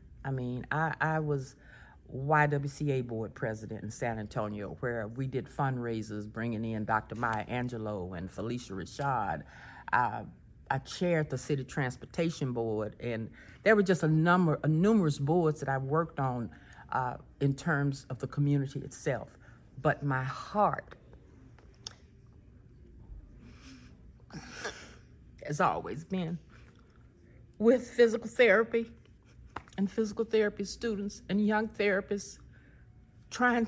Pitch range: 135-210 Hz